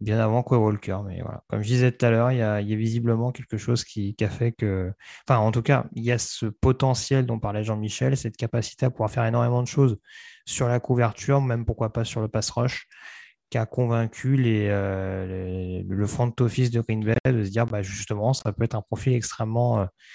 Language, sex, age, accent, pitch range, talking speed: French, male, 20-39, French, 105-125 Hz, 225 wpm